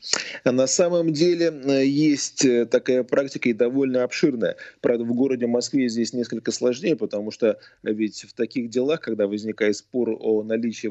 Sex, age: male, 30-49